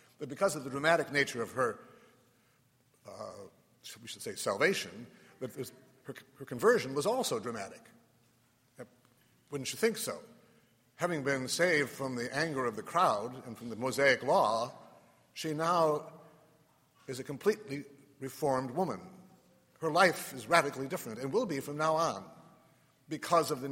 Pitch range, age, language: 120-150 Hz, 60-79, English